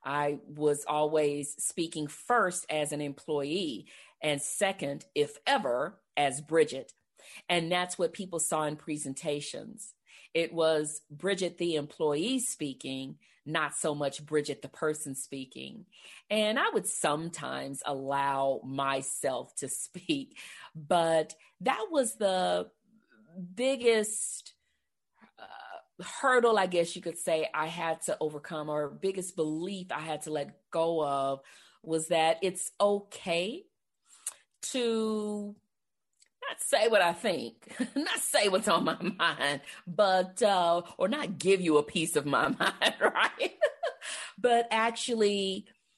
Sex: female